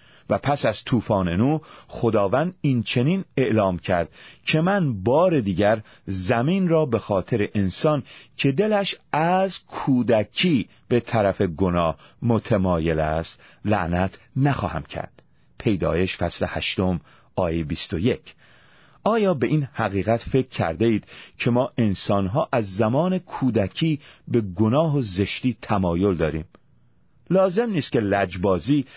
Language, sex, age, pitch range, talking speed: Persian, male, 40-59, 95-140 Hz, 130 wpm